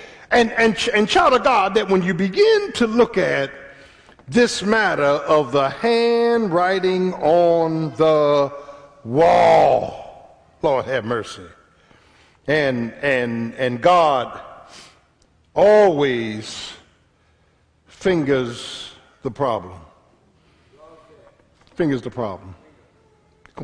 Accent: American